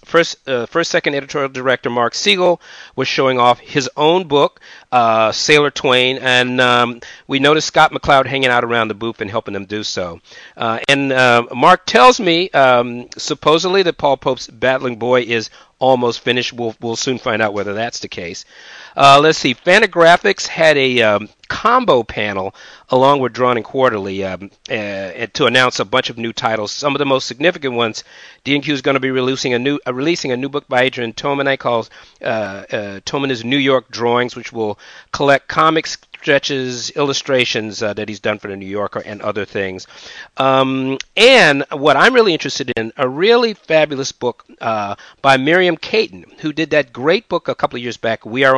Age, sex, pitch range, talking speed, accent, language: 40-59, male, 120-150 Hz, 190 wpm, American, English